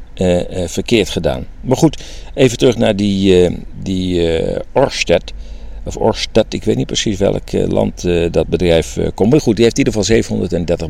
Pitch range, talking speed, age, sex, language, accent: 80-110 Hz, 160 wpm, 50-69, male, Dutch, Dutch